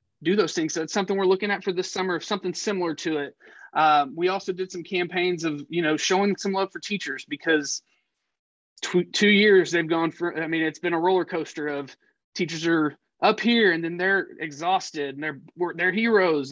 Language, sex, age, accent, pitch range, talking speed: English, male, 20-39, American, 160-190 Hz, 205 wpm